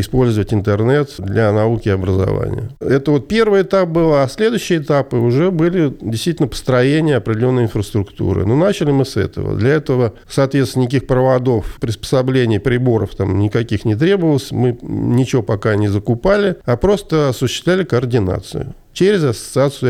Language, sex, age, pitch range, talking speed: Russian, male, 50-69, 105-140 Hz, 140 wpm